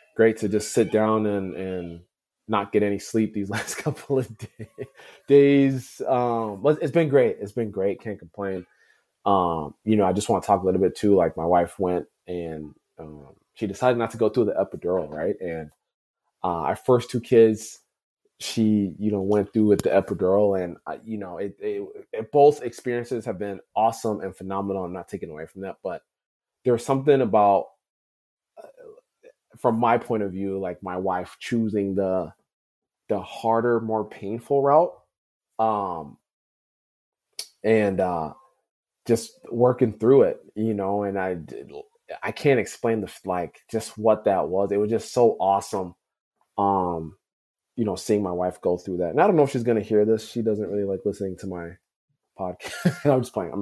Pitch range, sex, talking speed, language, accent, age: 95-115 Hz, male, 180 wpm, English, American, 20-39